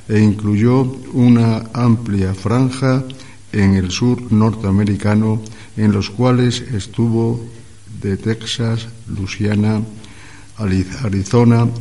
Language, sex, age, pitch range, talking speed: Spanish, male, 60-79, 100-115 Hz, 85 wpm